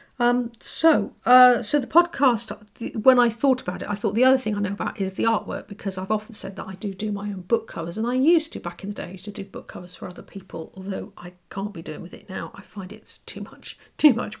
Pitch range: 195-225 Hz